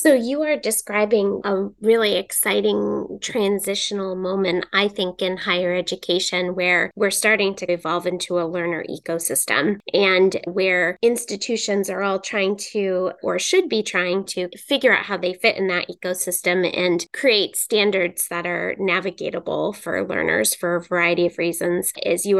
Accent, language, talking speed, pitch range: American, English, 155 wpm, 180-205 Hz